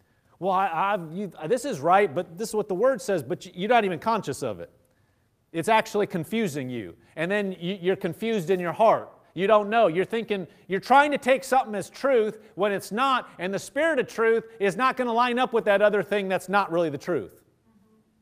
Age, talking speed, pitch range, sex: 40-59, 210 wpm, 185-260 Hz, male